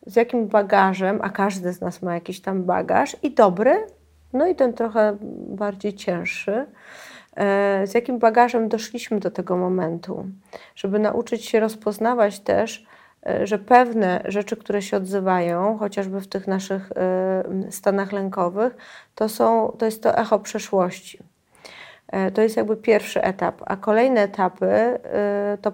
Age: 30-49